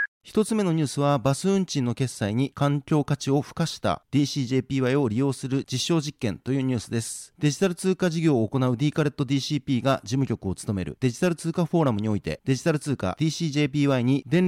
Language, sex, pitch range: Japanese, male, 125-155 Hz